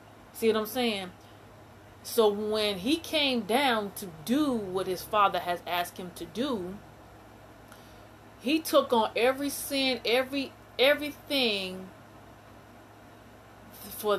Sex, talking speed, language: female, 115 wpm, English